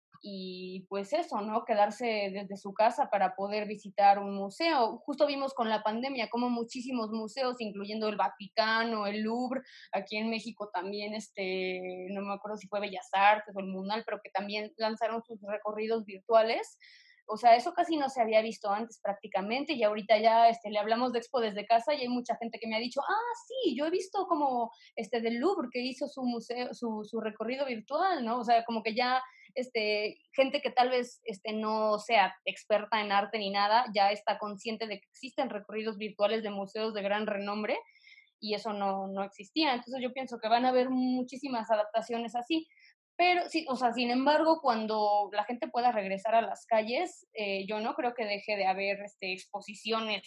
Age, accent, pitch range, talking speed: 20-39, Mexican, 210-245 Hz, 195 wpm